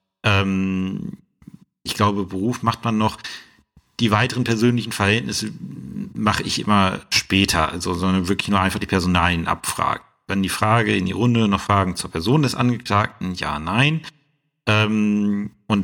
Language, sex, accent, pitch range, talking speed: German, male, German, 90-115 Hz, 140 wpm